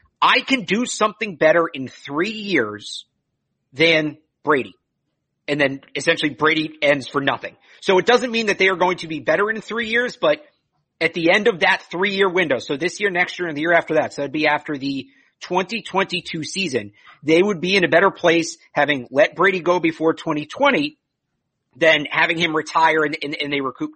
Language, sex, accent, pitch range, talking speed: English, male, American, 150-190 Hz, 195 wpm